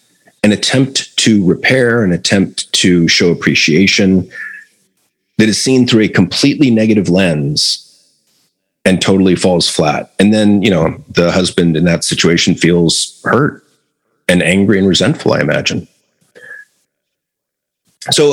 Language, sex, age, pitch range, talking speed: English, male, 40-59, 90-115 Hz, 130 wpm